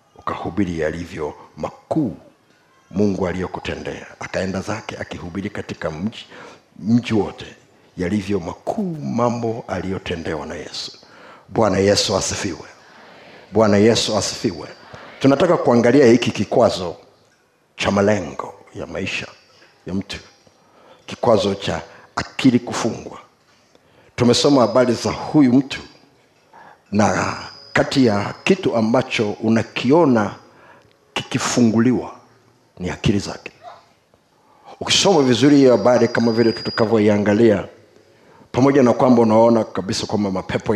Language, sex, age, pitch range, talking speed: Swahili, male, 60-79, 100-120 Hz, 100 wpm